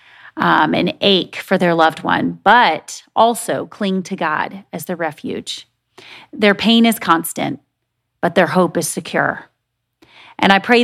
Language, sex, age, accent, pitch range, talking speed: English, female, 30-49, American, 165-210 Hz, 150 wpm